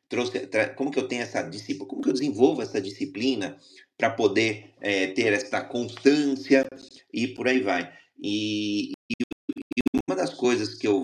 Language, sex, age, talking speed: Portuguese, male, 30-49, 150 wpm